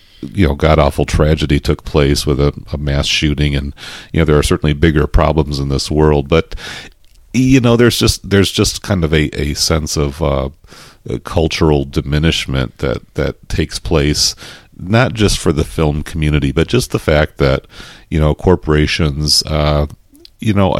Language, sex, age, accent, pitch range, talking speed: English, male, 40-59, American, 75-85 Hz, 170 wpm